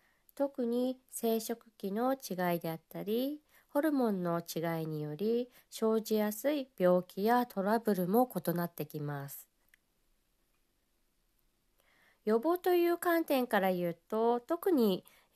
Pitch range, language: 180-265 Hz, Japanese